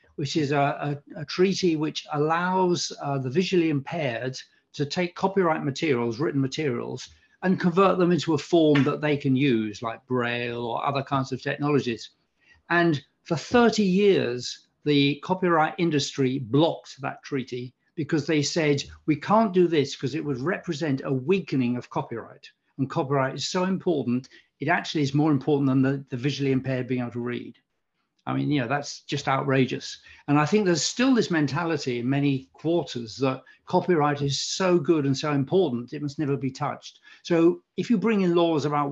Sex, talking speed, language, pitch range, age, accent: male, 175 wpm, English, 135-175 Hz, 50-69, British